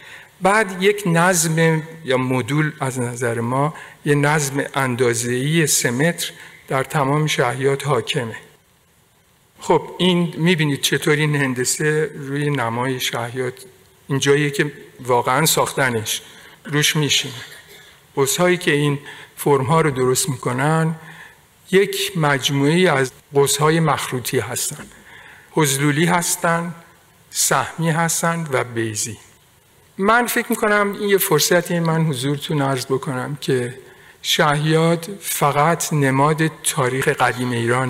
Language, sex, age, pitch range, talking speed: Persian, male, 50-69, 135-170 Hz, 105 wpm